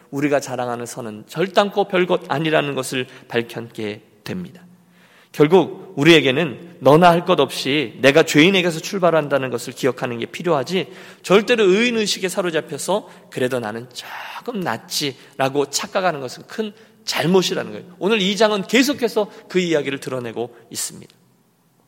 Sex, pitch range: male, 130-180 Hz